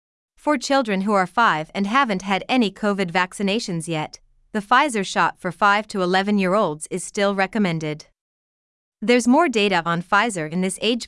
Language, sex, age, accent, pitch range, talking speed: English, female, 30-49, American, 180-230 Hz, 160 wpm